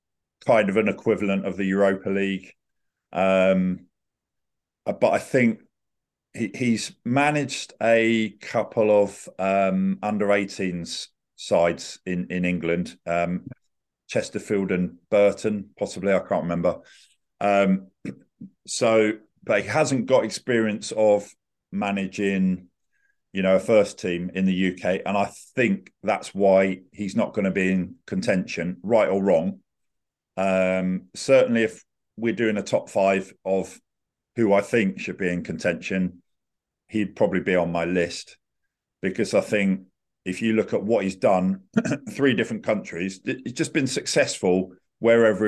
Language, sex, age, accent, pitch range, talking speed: English, male, 50-69, British, 95-110 Hz, 140 wpm